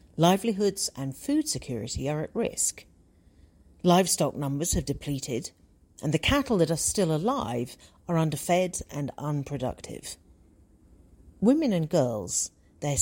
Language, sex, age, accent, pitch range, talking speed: English, female, 40-59, British, 115-165 Hz, 120 wpm